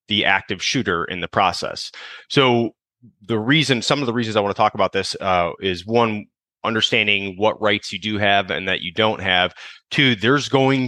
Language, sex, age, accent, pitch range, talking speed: English, male, 30-49, American, 95-115 Hz, 200 wpm